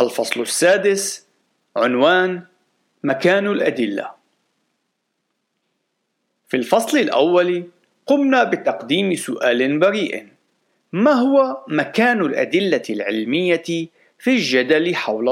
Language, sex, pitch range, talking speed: Arabic, male, 120-195 Hz, 80 wpm